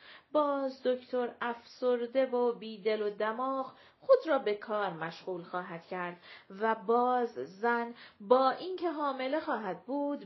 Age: 40-59